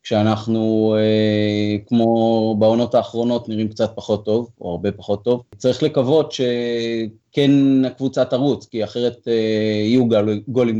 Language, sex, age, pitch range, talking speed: Hebrew, male, 20-39, 105-120 Hz, 115 wpm